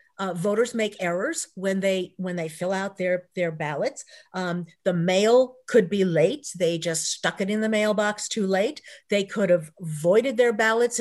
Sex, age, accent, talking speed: female, 50-69, American, 185 wpm